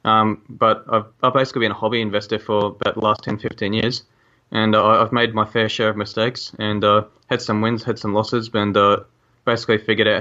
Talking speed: 225 wpm